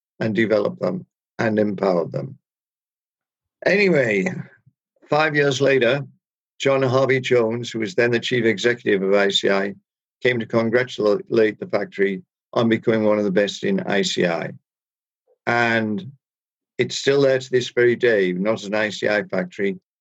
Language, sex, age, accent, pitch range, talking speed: English, male, 50-69, British, 100-120 Hz, 140 wpm